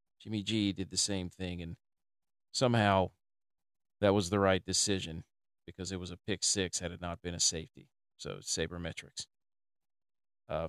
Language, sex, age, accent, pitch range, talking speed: English, male, 40-59, American, 85-100 Hz, 165 wpm